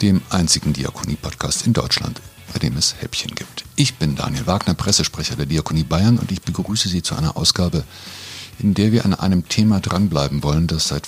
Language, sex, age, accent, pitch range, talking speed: German, male, 50-69, German, 80-110 Hz, 190 wpm